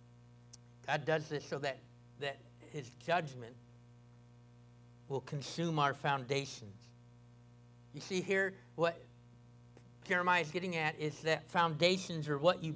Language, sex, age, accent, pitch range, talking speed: English, male, 60-79, American, 125-175 Hz, 120 wpm